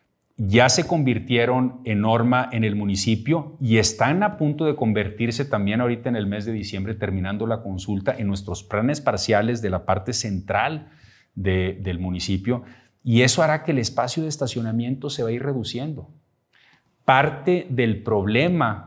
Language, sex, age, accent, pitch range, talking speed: Spanish, male, 40-59, Colombian, 100-125 Hz, 160 wpm